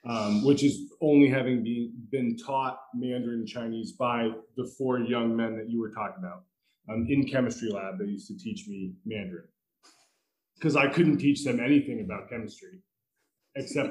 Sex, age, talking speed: male, 20-39, 165 wpm